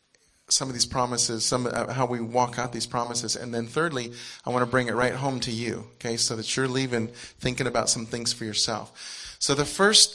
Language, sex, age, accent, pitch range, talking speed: English, male, 40-59, American, 115-140 Hz, 225 wpm